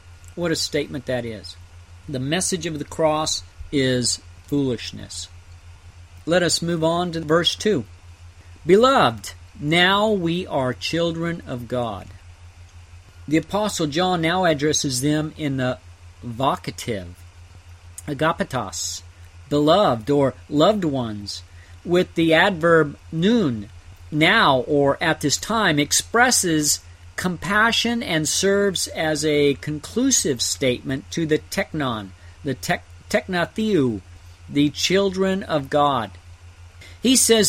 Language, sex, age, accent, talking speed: English, male, 50-69, American, 110 wpm